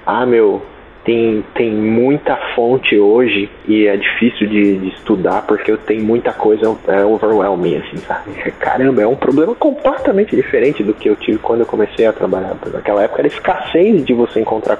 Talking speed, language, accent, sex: 180 wpm, Portuguese, Brazilian, male